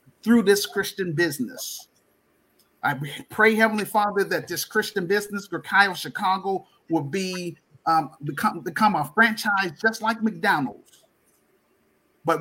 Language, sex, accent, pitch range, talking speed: English, male, American, 165-215 Hz, 120 wpm